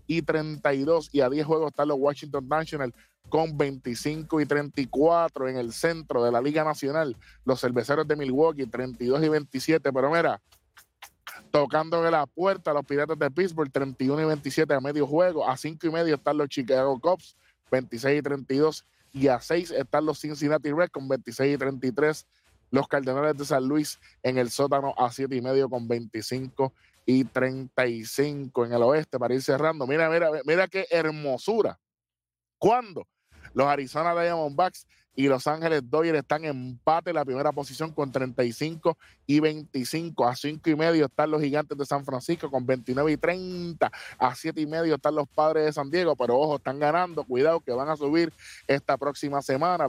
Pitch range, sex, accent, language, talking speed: 130-155 Hz, male, American, Spanish, 180 wpm